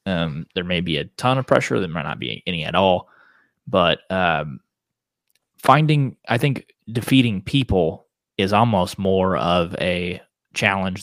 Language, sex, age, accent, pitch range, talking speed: English, male, 20-39, American, 95-115 Hz, 150 wpm